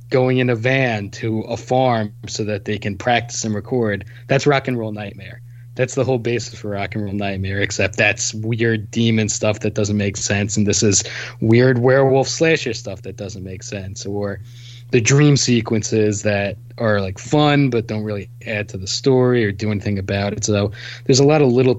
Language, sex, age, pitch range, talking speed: English, male, 20-39, 105-120 Hz, 205 wpm